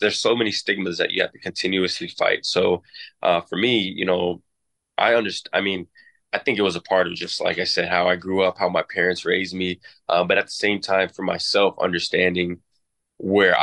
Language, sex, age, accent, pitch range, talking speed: English, male, 20-39, American, 90-105 Hz, 220 wpm